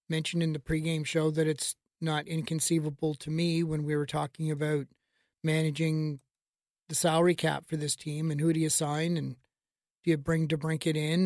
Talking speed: 190 wpm